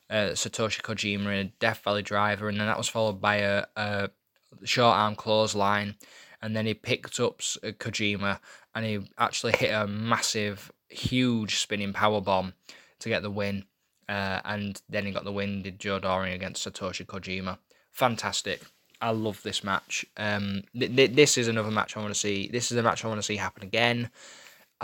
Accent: British